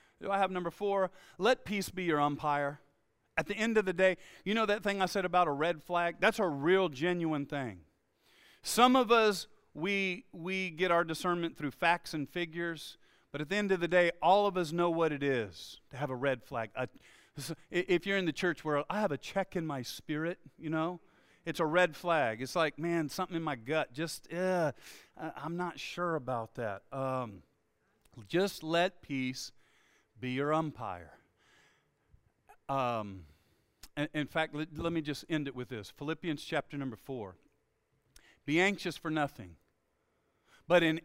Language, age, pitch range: English, 40-59, 145-180 Hz